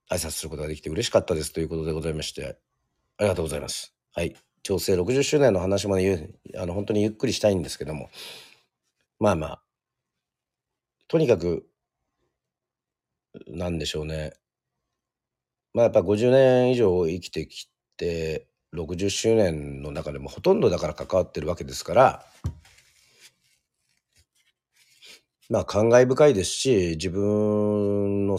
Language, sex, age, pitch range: Japanese, male, 40-59, 80-105 Hz